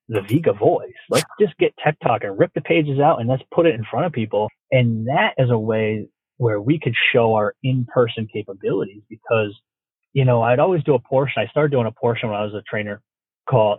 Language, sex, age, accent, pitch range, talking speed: English, male, 30-49, American, 110-135 Hz, 225 wpm